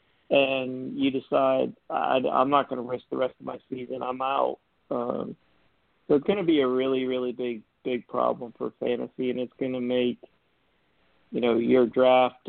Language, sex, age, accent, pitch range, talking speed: English, male, 50-69, American, 125-140 Hz, 185 wpm